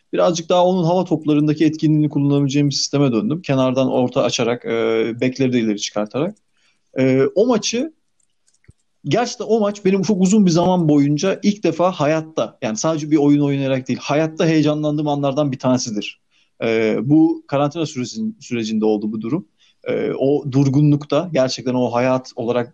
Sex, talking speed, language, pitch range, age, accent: male, 150 wpm, Turkish, 125-170 Hz, 30-49, native